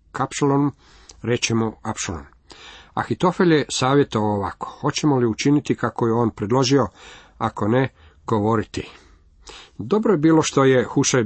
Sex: male